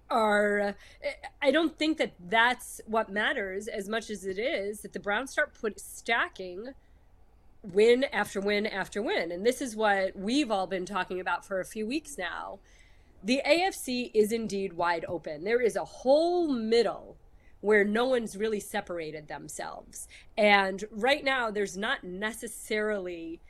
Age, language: 30-49, English